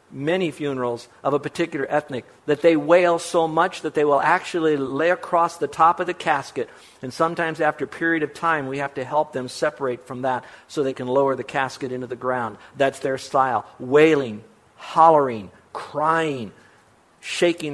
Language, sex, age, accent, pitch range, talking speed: English, male, 50-69, American, 140-180 Hz, 180 wpm